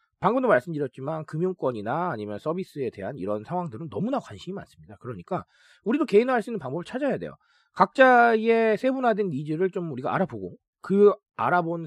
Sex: male